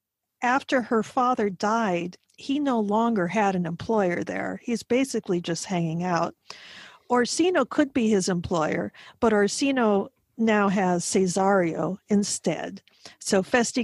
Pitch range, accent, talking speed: 190-250 Hz, American, 125 wpm